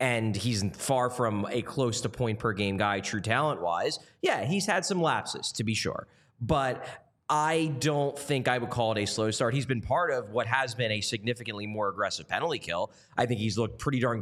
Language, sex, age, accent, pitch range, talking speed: English, male, 20-39, American, 110-160 Hz, 200 wpm